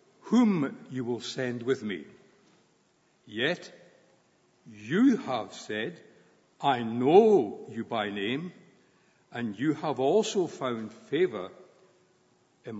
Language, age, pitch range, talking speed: English, 60-79, 130-200 Hz, 105 wpm